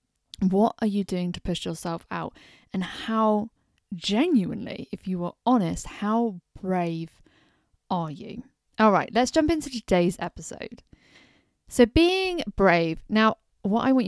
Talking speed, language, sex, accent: 140 wpm, English, female, British